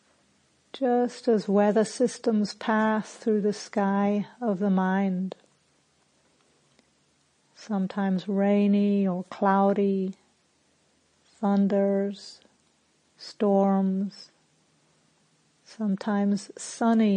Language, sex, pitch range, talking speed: English, female, 195-220 Hz, 65 wpm